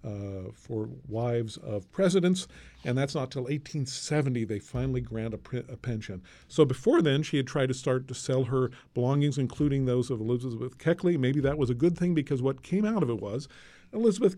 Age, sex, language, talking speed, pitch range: 50-69, male, English, 200 wpm, 120-155 Hz